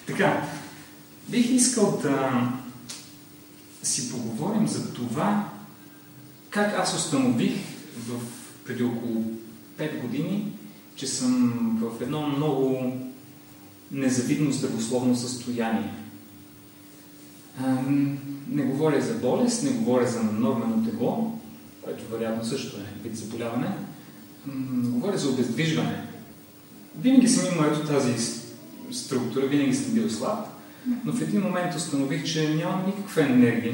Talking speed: 105 wpm